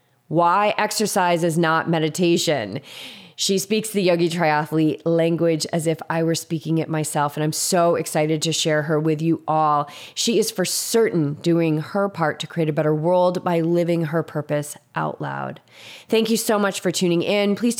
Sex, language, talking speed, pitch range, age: female, English, 180 wpm, 160-190 Hz, 20-39